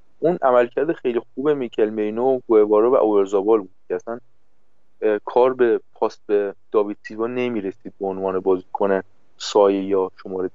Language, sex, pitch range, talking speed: English, male, 105-130 Hz, 155 wpm